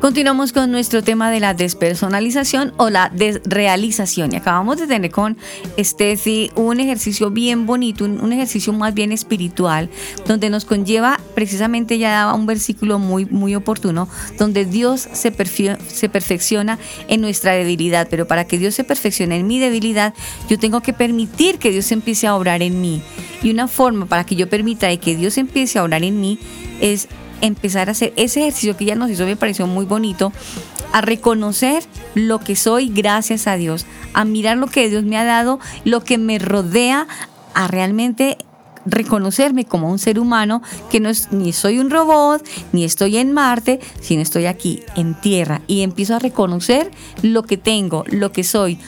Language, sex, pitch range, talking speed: Spanish, female, 195-235 Hz, 175 wpm